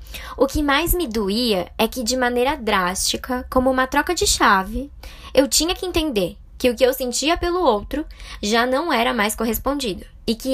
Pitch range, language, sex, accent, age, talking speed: 225-305 Hz, Portuguese, male, Brazilian, 10-29, 190 wpm